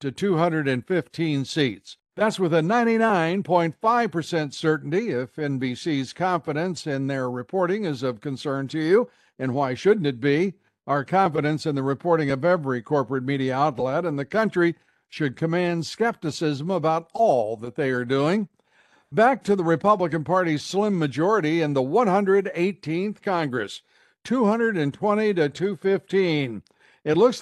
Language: English